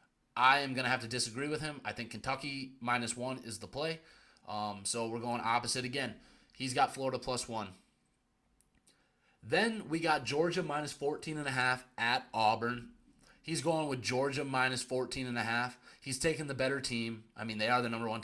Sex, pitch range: male, 115-145 Hz